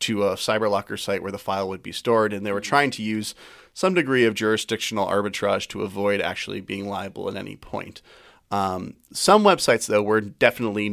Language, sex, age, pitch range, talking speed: English, male, 30-49, 100-115 Hz, 190 wpm